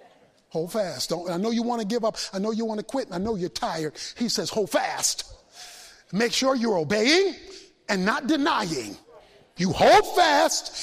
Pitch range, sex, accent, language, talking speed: 205-275 Hz, male, American, English, 185 wpm